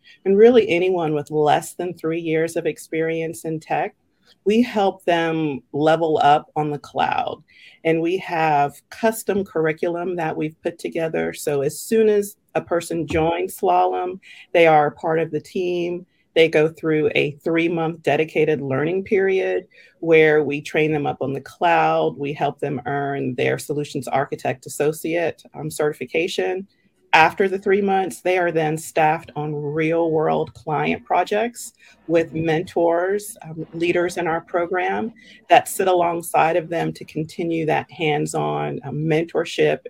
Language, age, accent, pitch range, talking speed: English, 40-59, American, 155-180 Hz, 150 wpm